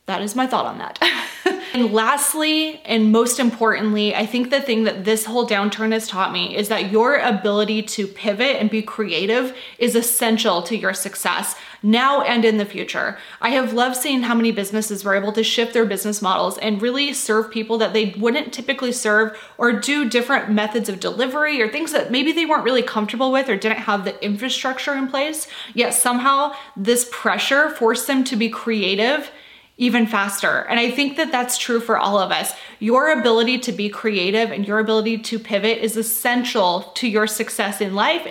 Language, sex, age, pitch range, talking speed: English, female, 20-39, 215-255 Hz, 195 wpm